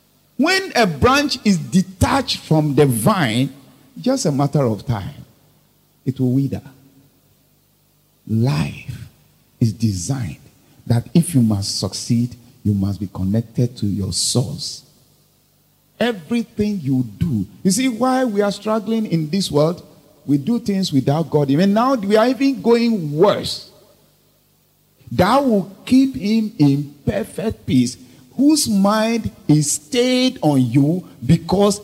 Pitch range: 125-190 Hz